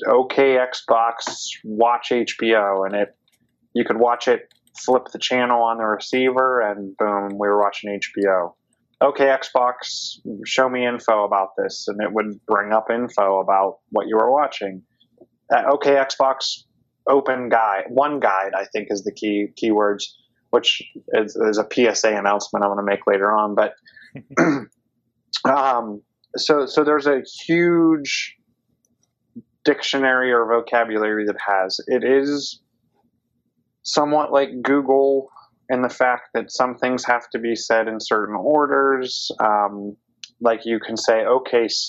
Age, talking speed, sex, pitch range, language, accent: 20-39, 145 wpm, male, 105-130 Hz, English, American